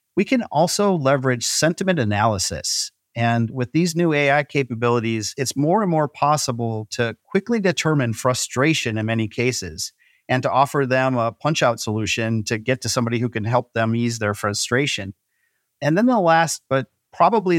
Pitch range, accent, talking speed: 120-160 Hz, American, 165 wpm